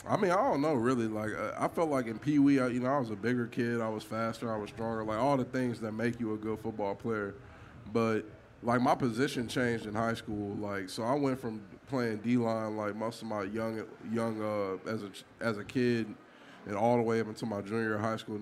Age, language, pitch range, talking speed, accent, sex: 20-39, English, 110-125 Hz, 250 wpm, American, male